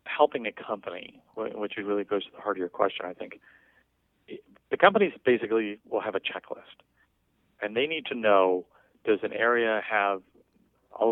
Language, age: English, 40-59